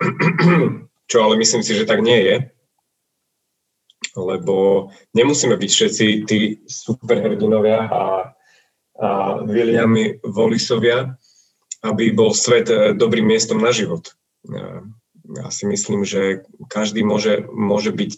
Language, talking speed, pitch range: Slovak, 110 wpm, 105-145 Hz